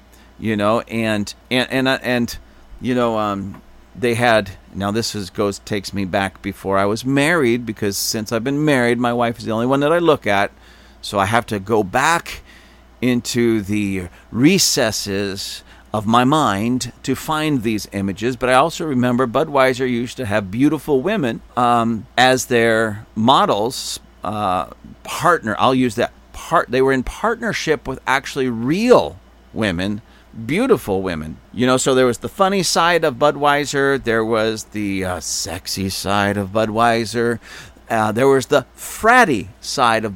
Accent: American